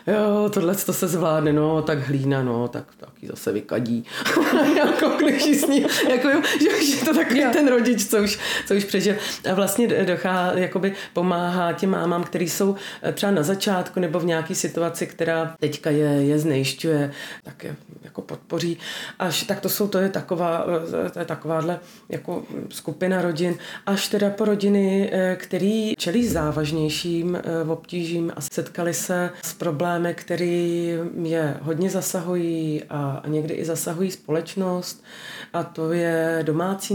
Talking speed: 150 wpm